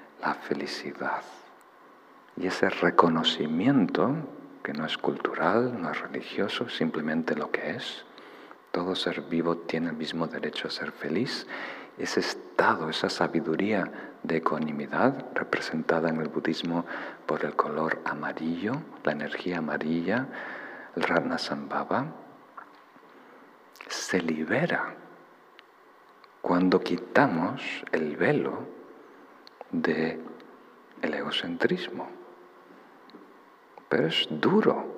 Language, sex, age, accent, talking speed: Spanish, male, 50-69, Spanish, 100 wpm